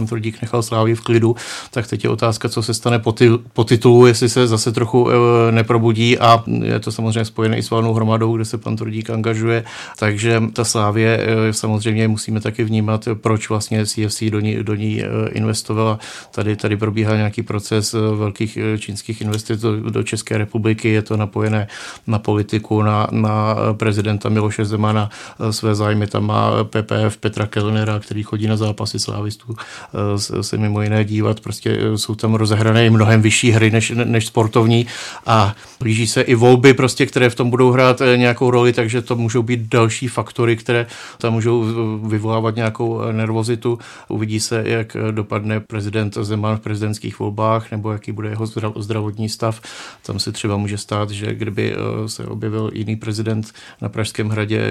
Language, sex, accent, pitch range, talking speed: Czech, male, native, 110-115 Hz, 170 wpm